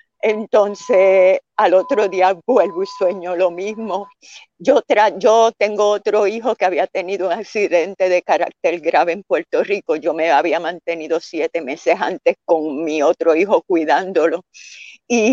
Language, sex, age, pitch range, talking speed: Spanish, female, 50-69, 180-225 Hz, 155 wpm